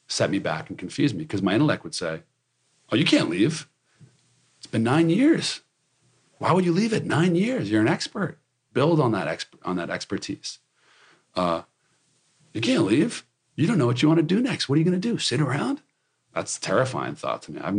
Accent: American